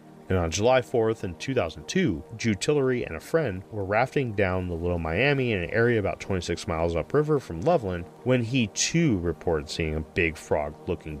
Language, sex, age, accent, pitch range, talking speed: English, male, 30-49, American, 85-115 Hz, 180 wpm